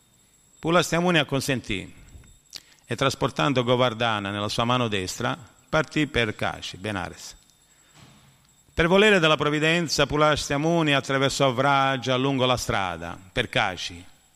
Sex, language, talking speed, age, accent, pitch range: male, Italian, 115 wpm, 50-69, native, 110-135 Hz